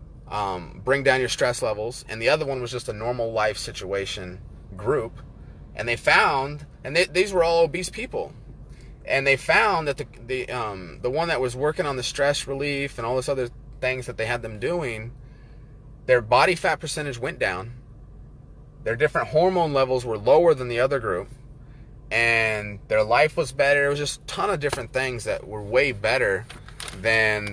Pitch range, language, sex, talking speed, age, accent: 125-170 Hz, English, male, 185 wpm, 30-49, American